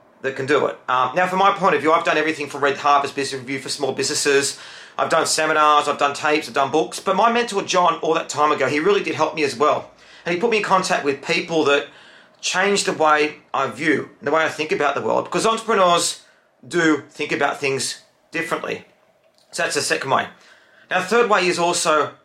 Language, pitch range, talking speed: English, 150-180 Hz, 230 wpm